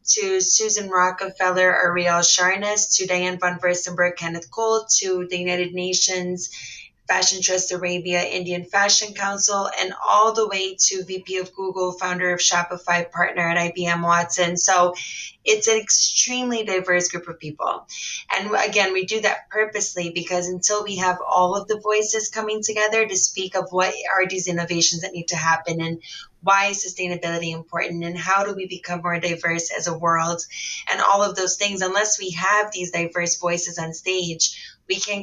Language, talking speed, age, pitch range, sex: English, 170 wpm, 10-29, 175-195 Hz, female